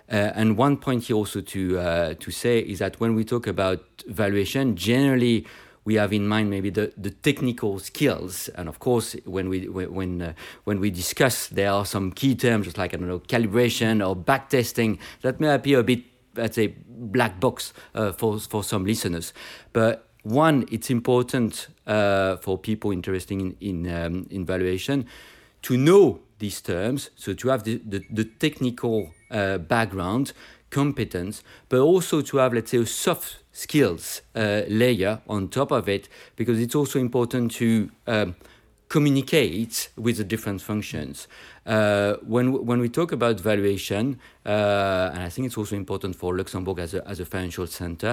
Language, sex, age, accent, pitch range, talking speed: English, male, 50-69, French, 95-120 Hz, 175 wpm